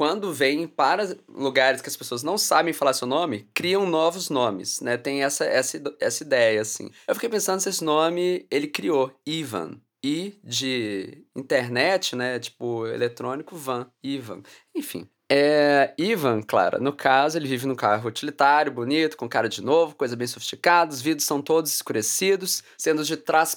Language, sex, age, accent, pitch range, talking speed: English, male, 20-39, Brazilian, 135-180 Hz, 170 wpm